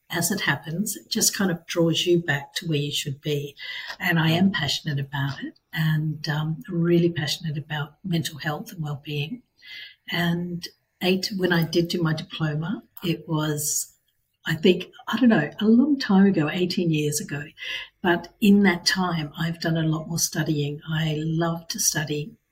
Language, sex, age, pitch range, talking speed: English, female, 60-79, 155-185 Hz, 175 wpm